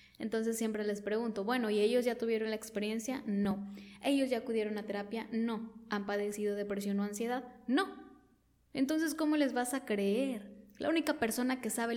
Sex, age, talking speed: female, 10-29, 175 wpm